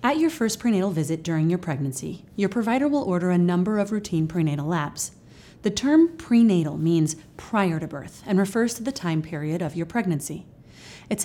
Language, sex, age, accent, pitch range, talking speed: English, female, 30-49, American, 165-220 Hz, 185 wpm